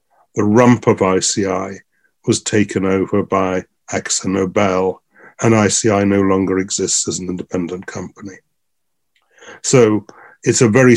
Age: 60-79